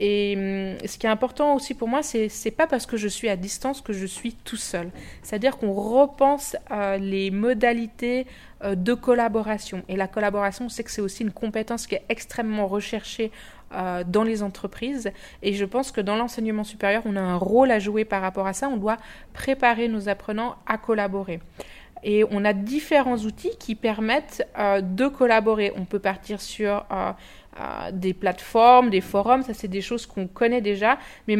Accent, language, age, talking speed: French, French, 20-39, 195 wpm